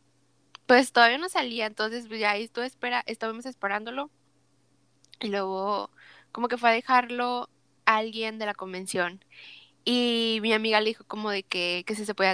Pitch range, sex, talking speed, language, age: 195-250 Hz, female, 155 wpm, Spanish, 10-29